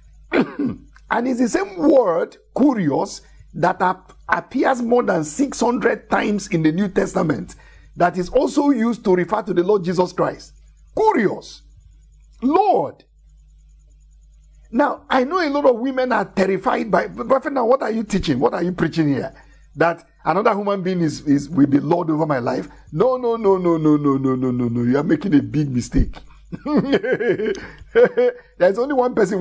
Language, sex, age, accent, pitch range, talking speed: English, male, 50-69, Nigerian, 145-235 Hz, 170 wpm